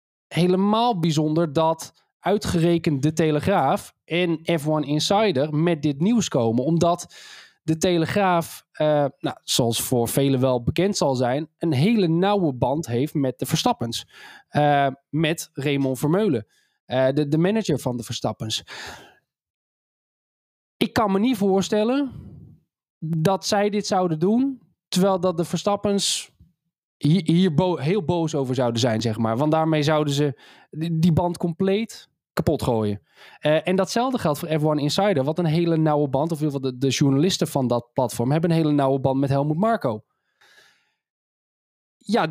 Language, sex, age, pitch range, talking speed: Dutch, male, 20-39, 140-185 Hz, 150 wpm